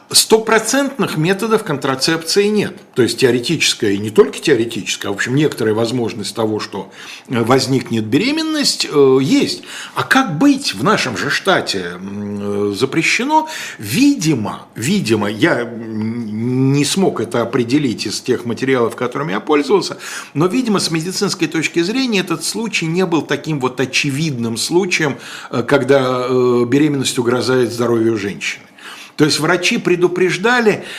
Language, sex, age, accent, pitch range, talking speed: Russian, male, 50-69, native, 125-195 Hz, 125 wpm